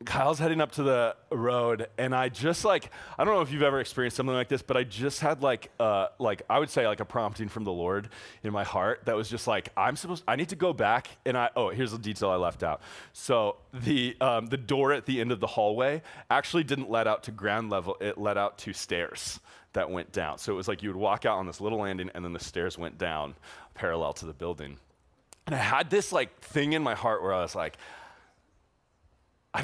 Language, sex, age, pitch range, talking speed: English, male, 30-49, 95-130 Hz, 255 wpm